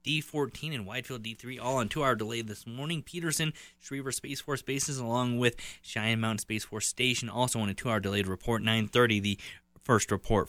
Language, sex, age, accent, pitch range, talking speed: English, male, 20-39, American, 105-130 Hz, 185 wpm